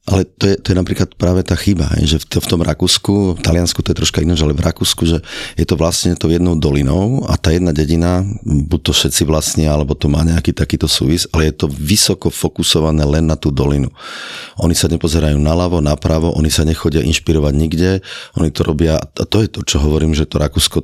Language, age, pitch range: Slovak, 30-49, 75-90 Hz